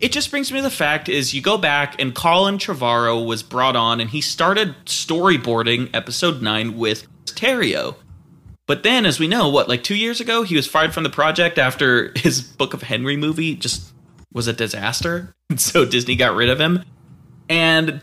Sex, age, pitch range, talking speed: male, 20-39, 120-185 Hz, 195 wpm